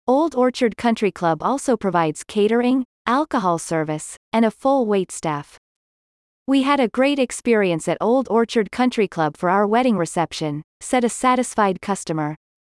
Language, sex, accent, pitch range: English, female, American, 175-250 Hz